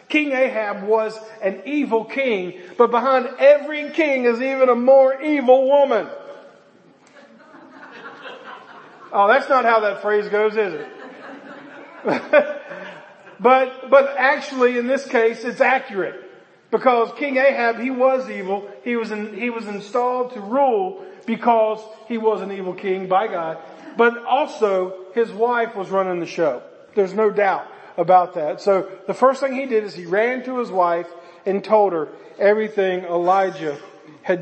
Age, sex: 40-59, male